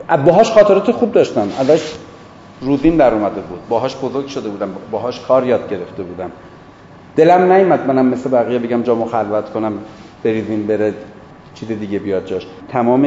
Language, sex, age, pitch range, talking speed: Persian, male, 40-59, 110-135 Hz, 160 wpm